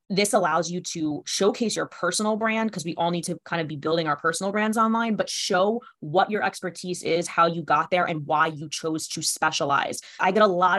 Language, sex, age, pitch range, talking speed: English, female, 20-39, 160-190 Hz, 230 wpm